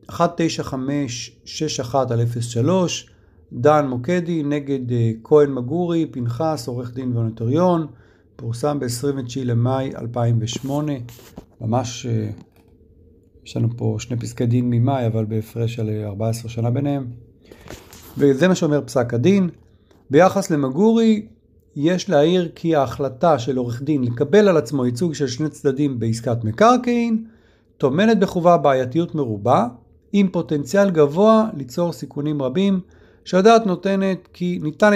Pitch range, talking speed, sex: 120-170 Hz, 120 wpm, male